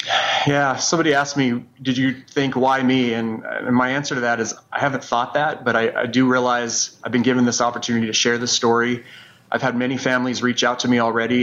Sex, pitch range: male, 120-130 Hz